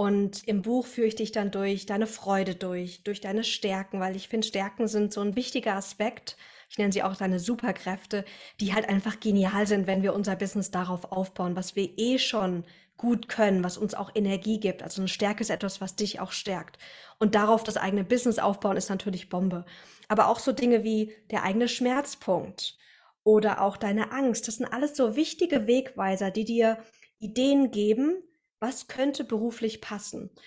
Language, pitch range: German, 195-230 Hz